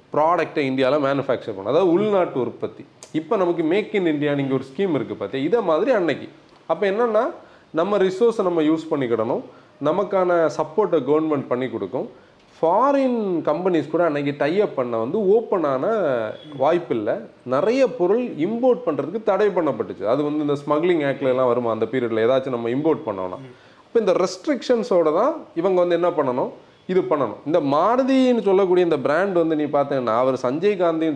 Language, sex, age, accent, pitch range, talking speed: Tamil, male, 30-49, native, 135-190 Hz, 155 wpm